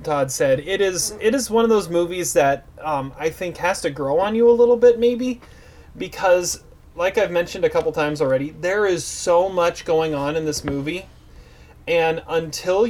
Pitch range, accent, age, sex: 140-175 Hz, American, 30-49, male